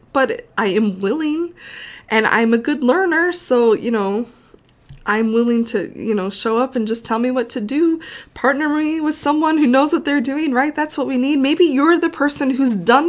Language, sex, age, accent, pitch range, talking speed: English, female, 20-39, American, 215-270 Hz, 210 wpm